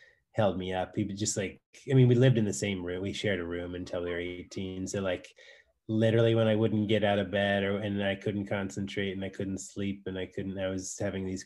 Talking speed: 255 wpm